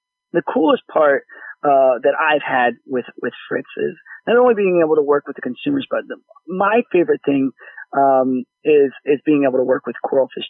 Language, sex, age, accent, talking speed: English, male, 30-49, American, 195 wpm